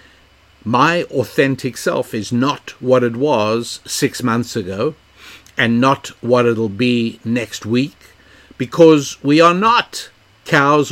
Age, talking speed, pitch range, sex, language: 60-79, 125 wpm, 110-145 Hz, male, English